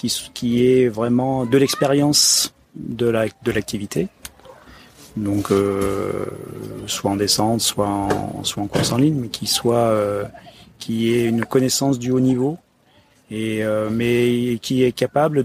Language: French